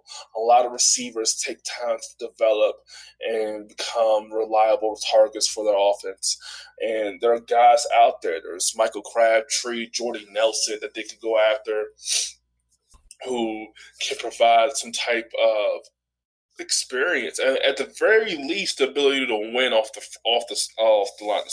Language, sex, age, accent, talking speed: English, male, 20-39, American, 155 wpm